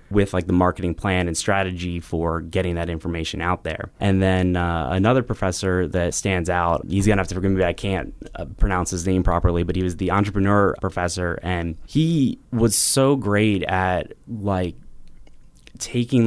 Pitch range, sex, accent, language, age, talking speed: 90-105 Hz, male, American, English, 20-39, 175 wpm